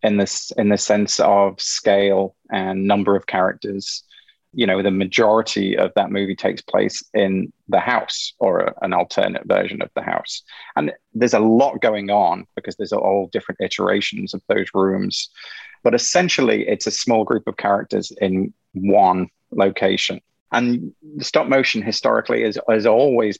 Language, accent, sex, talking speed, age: English, British, male, 160 wpm, 30-49